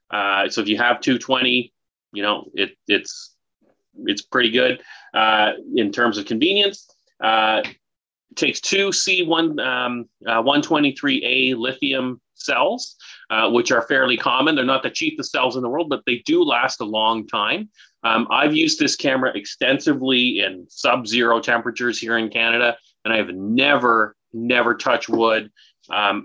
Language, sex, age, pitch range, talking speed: English, male, 30-49, 115-145 Hz, 155 wpm